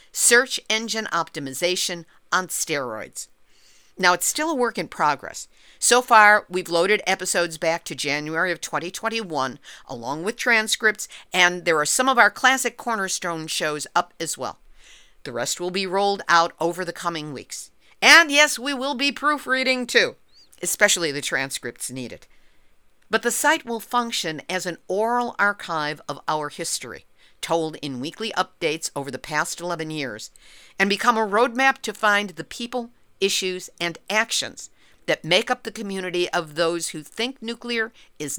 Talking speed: 160 wpm